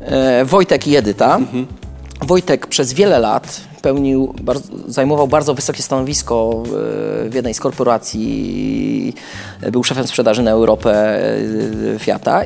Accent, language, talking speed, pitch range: native, Polish, 105 wpm, 125-180 Hz